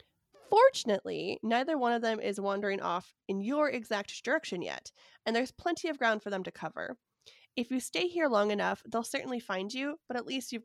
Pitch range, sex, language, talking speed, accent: 195-255 Hz, female, English, 205 wpm, American